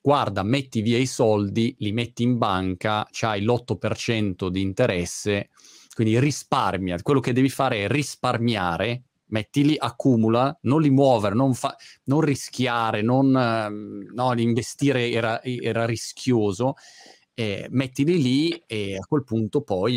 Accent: native